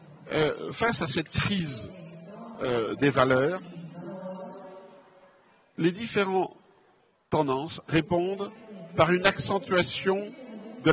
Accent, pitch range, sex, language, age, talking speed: French, 145-205 Hz, male, Italian, 50-69, 90 wpm